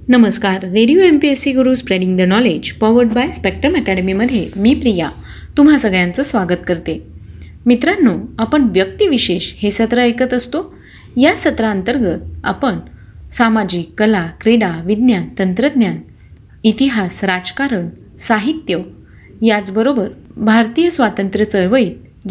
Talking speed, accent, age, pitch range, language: 115 wpm, native, 30-49, 190-250 Hz, Marathi